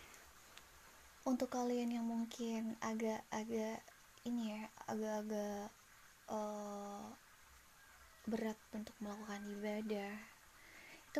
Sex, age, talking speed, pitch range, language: female, 20-39, 75 wpm, 210-230 Hz, Indonesian